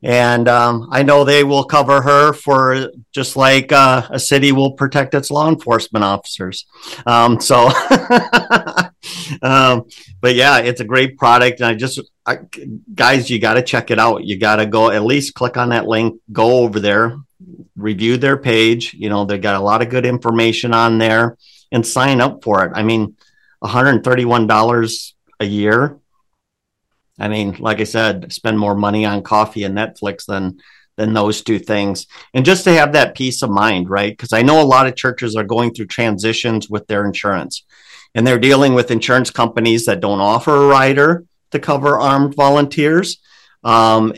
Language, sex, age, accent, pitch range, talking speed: English, male, 50-69, American, 110-135 Hz, 180 wpm